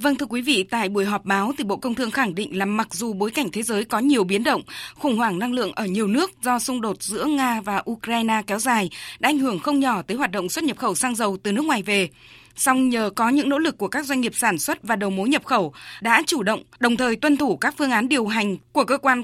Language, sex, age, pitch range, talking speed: Vietnamese, female, 20-39, 215-280 Hz, 280 wpm